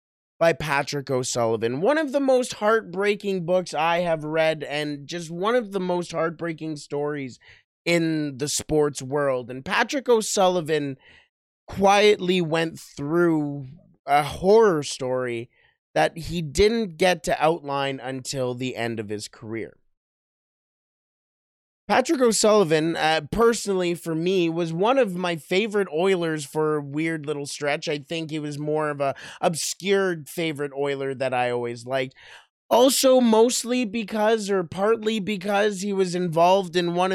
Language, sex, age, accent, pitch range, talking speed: English, male, 20-39, American, 150-200 Hz, 140 wpm